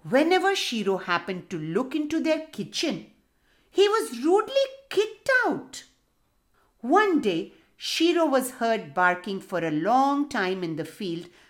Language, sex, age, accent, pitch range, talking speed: English, female, 50-69, Indian, 205-315 Hz, 135 wpm